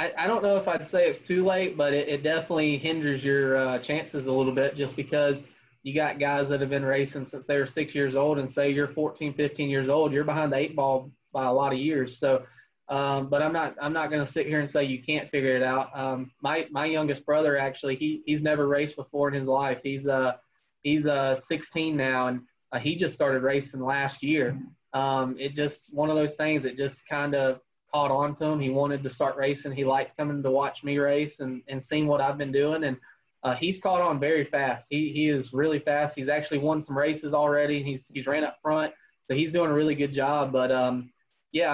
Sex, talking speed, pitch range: male, 240 wpm, 135-150 Hz